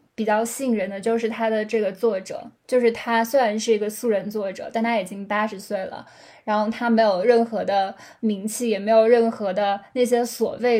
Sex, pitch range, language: female, 215-245 Hz, Chinese